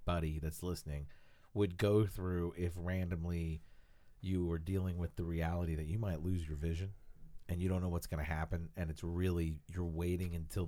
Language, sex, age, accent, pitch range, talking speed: English, male, 40-59, American, 80-95 Hz, 190 wpm